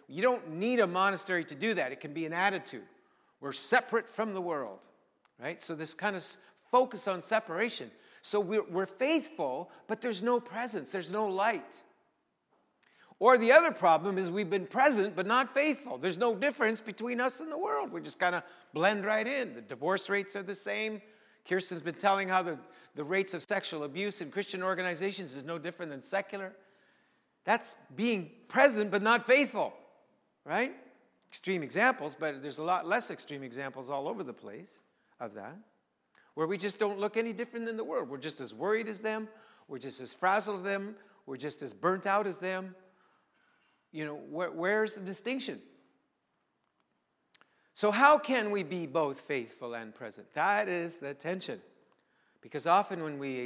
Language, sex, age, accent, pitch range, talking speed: English, male, 50-69, American, 165-220 Hz, 180 wpm